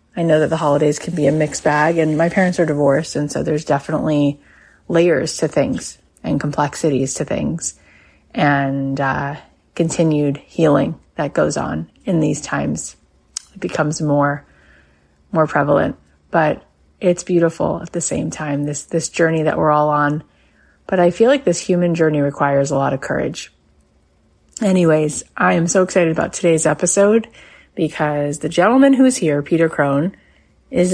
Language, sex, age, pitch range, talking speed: English, female, 30-49, 145-175 Hz, 165 wpm